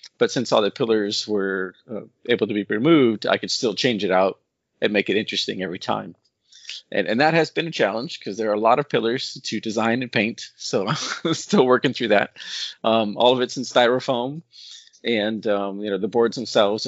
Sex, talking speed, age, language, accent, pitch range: male, 215 wpm, 40-59, English, American, 100-115 Hz